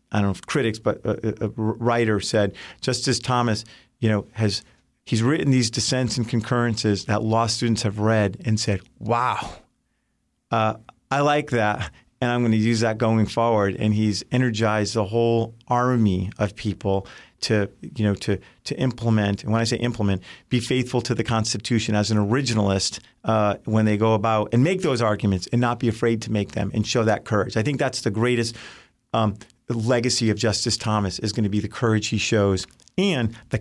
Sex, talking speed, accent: male, 195 wpm, American